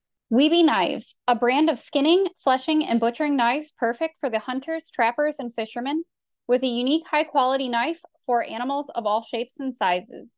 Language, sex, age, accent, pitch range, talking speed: English, female, 10-29, American, 255-320 Hz, 175 wpm